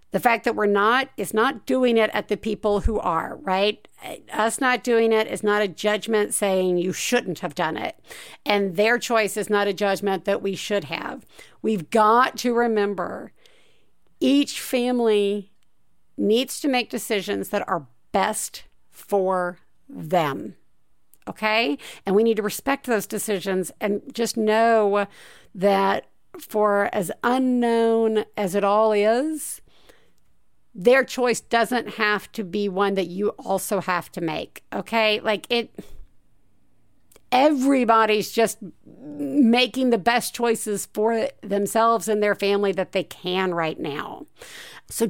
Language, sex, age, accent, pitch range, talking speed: English, female, 50-69, American, 200-235 Hz, 140 wpm